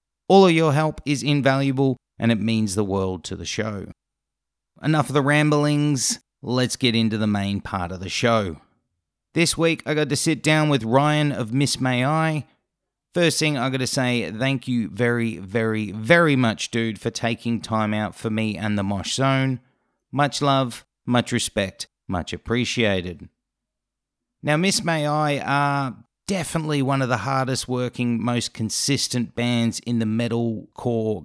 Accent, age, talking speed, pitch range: Australian, 30-49, 165 wpm, 115-145 Hz